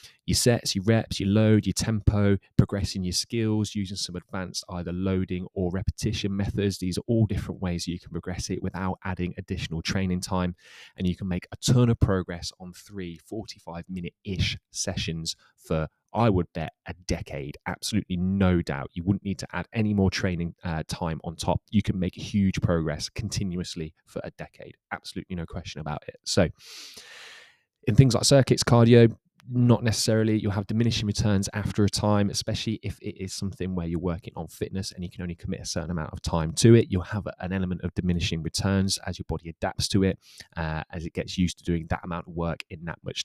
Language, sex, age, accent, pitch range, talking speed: English, male, 20-39, British, 90-105 Hz, 200 wpm